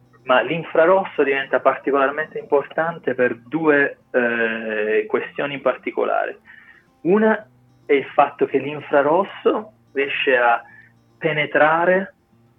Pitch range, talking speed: 120-155 Hz, 95 wpm